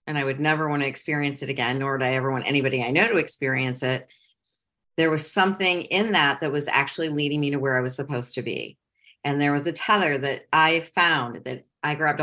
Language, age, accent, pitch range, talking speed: English, 40-59, American, 140-160 Hz, 235 wpm